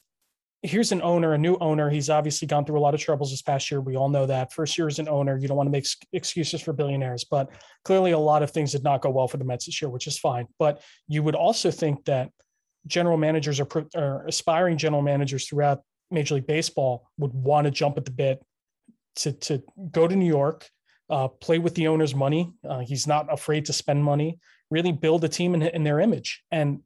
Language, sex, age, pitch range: English, male, 20-39, 135-160 Hz